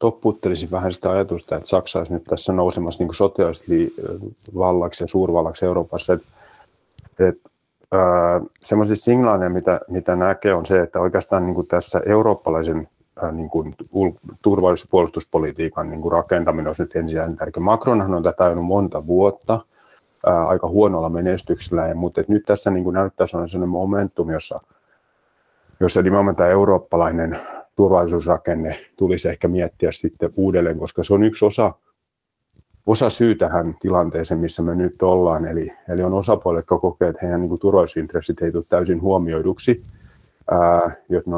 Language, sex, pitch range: Finnish, male, 85-100 Hz